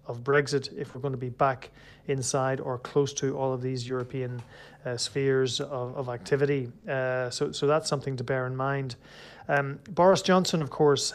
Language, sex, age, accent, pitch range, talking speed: English, male, 30-49, Irish, 130-145 Hz, 190 wpm